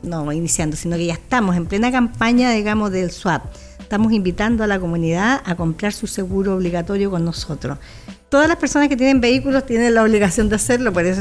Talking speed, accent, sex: 200 wpm, American, female